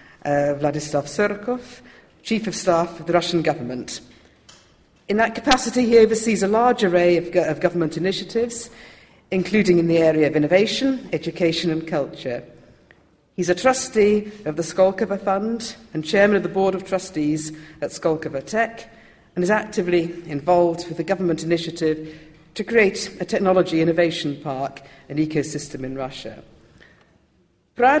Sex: female